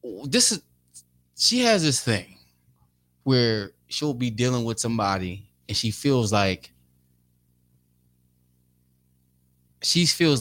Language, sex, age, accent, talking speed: English, male, 20-39, American, 105 wpm